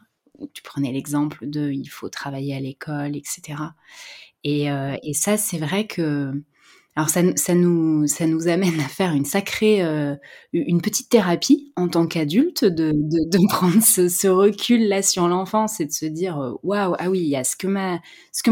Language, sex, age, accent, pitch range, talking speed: French, female, 20-39, French, 150-190 Hz, 190 wpm